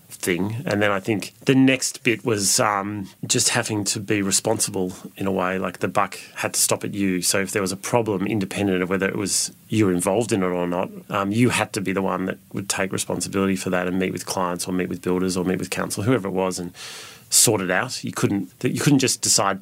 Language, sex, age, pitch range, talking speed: English, male, 30-49, 95-110 Hz, 250 wpm